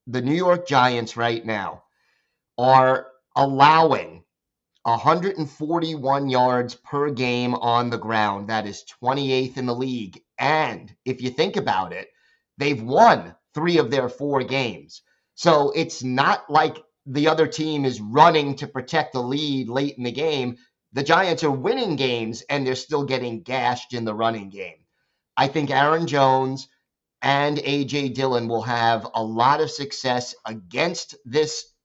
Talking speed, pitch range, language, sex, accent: 150 wpm, 125-150 Hz, English, male, American